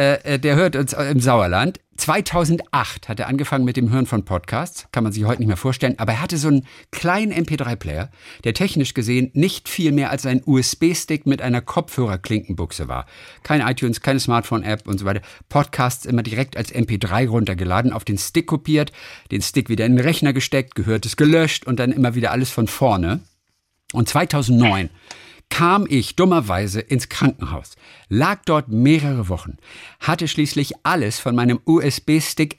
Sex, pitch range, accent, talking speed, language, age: male, 110-150 Hz, German, 170 wpm, German, 50-69